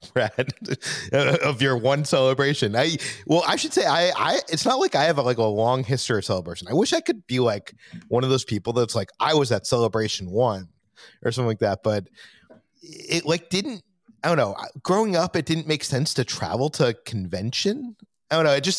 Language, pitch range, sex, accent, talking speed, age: English, 110-140 Hz, male, American, 215 wpm, 30-49